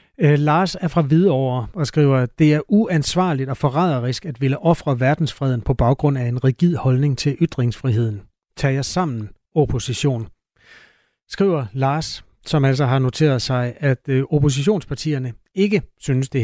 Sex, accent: male, native